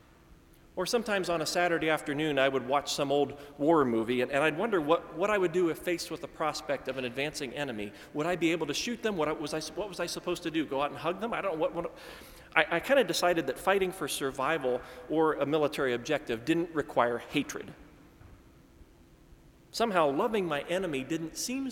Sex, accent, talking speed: male, American, 215 wpm